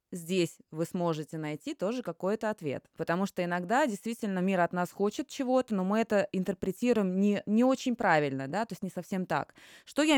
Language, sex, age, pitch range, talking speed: Russian, female, 20-39, 185-250 Hz, 190 wpm